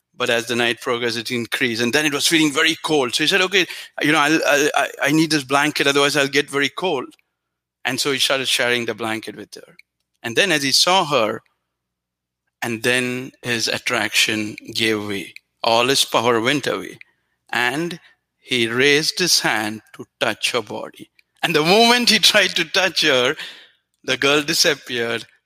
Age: 50-69